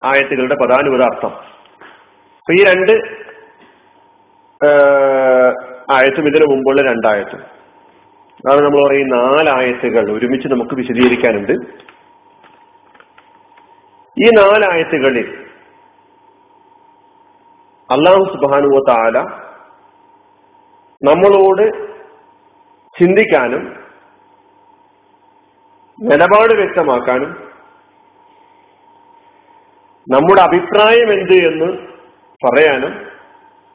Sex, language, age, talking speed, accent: male, Malayalam, 40-59, 50 wpm, native